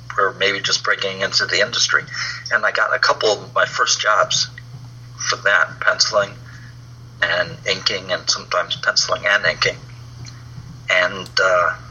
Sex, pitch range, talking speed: male, 120-125 Hz, 135 wpm